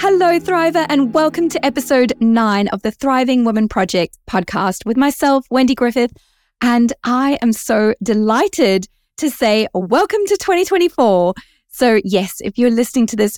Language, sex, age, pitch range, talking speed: English, female, 20-39, 190-255 Hz, 150 wpm